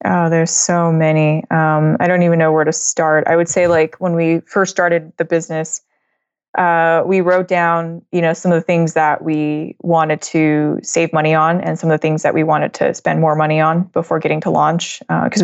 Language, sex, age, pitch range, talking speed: English, female, 20-39, 155-175 Hz, 220 wpm